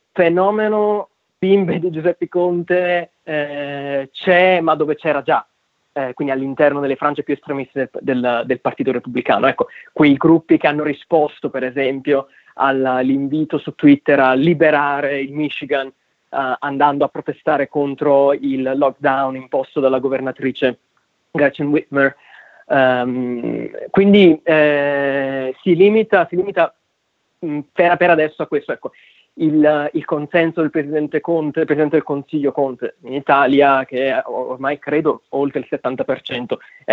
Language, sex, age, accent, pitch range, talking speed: Italian, male, 20-39, native, 135-165 Hz, 135 wpm